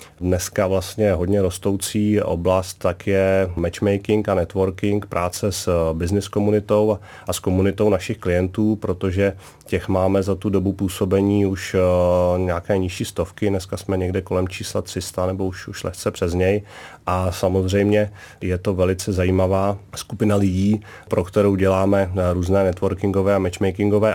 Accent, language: native, Czech